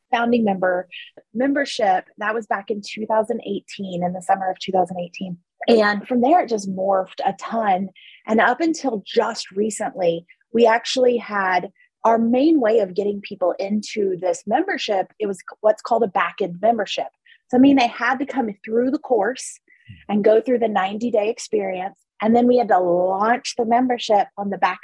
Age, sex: 30-49, female